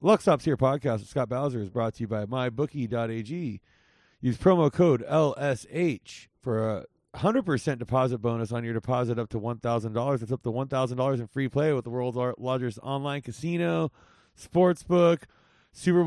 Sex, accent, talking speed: male, American, 160 wpm